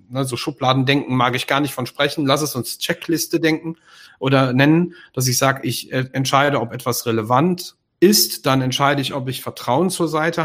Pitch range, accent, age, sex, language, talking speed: 130-155 Hz, German, 40-59, male, German, 190 wpm